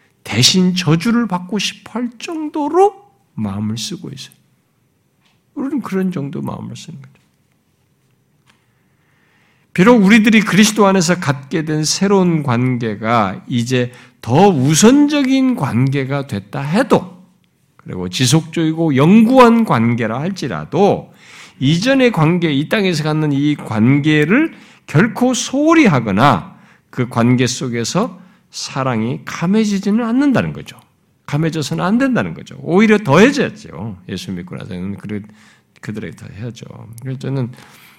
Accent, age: native, 50-69